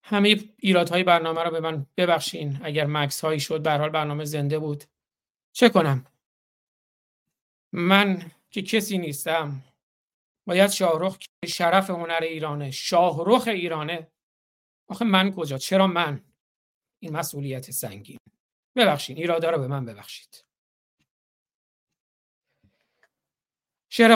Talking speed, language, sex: 110 wpm, Persian, male